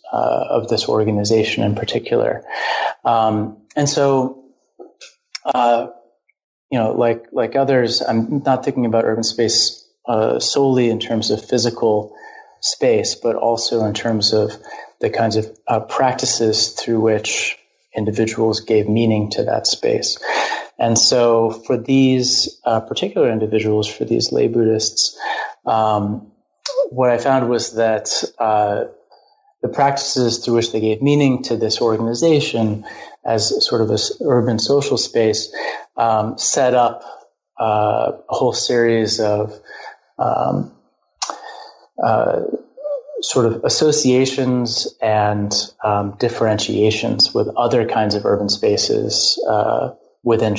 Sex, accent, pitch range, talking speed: male, American, 110-130 Hz, 125 wpm